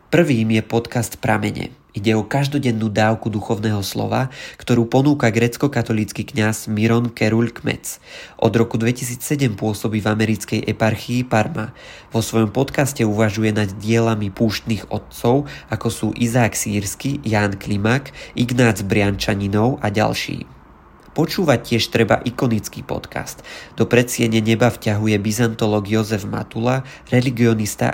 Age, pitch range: 20-39, 105-120 Hz